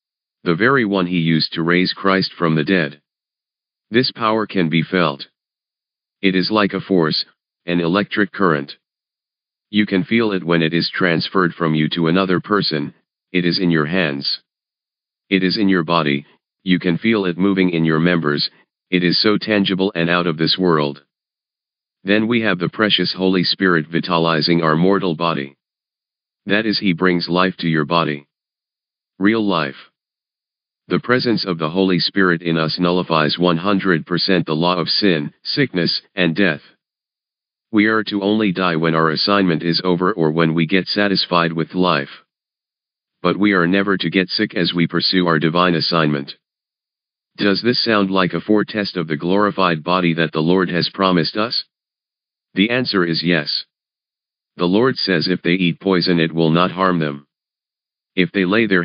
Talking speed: 170 wpm